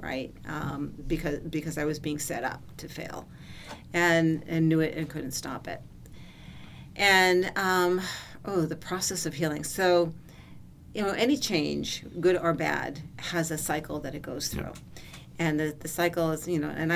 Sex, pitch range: female, 155-180 Hz